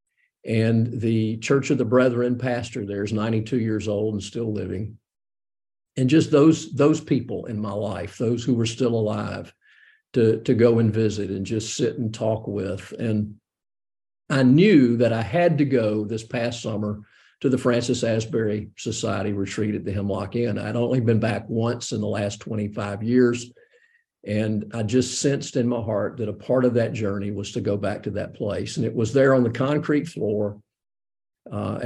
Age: 50-69